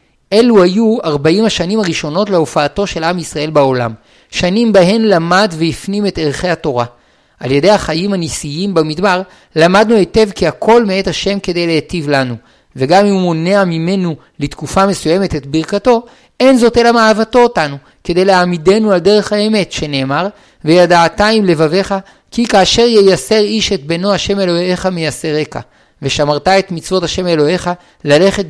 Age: 50-69